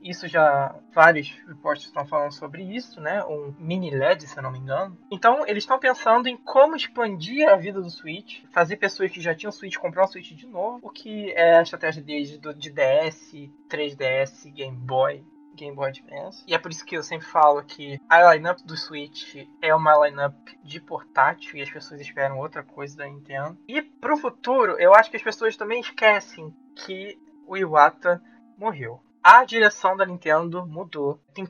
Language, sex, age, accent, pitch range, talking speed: Portuguese, male, 20-39, Brazilian, 150-190 Hz, 190 wpm